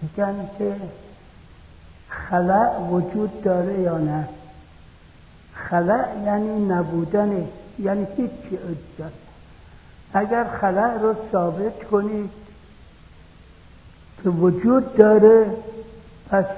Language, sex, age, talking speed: Persian, male, 60-79, 80 wpm